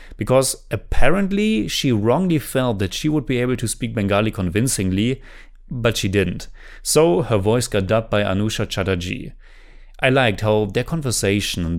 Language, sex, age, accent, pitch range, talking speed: English, male, 30-49, German, 100-140 Hz, 160 wpm